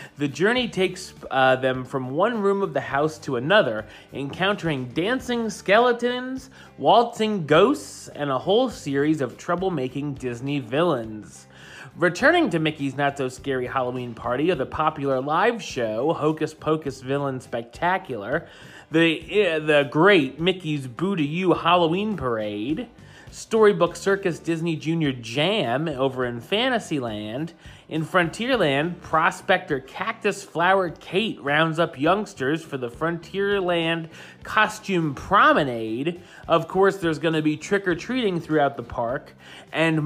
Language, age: English, 30-49